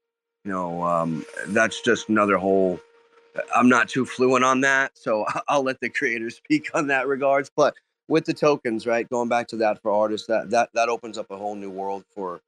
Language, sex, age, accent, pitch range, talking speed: English, male, 30-49, American, 95-140 Hz, 205 wpm